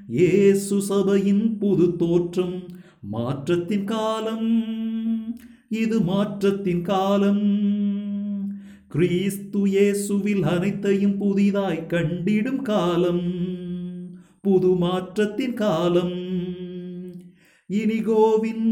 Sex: male